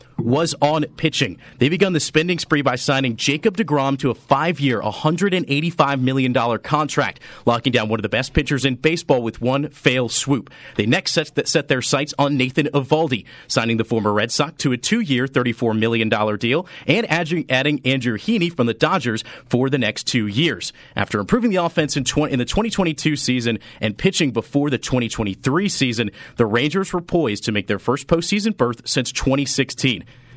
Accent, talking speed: American, 175 wpm